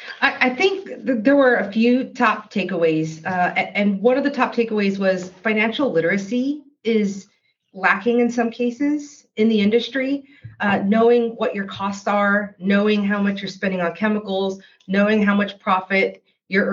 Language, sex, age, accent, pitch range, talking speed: English, female, 40-59, American, 180-220 Hz, 160 wpm